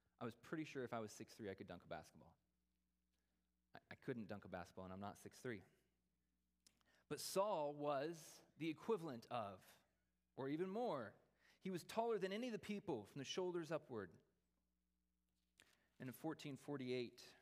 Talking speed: 160 wpm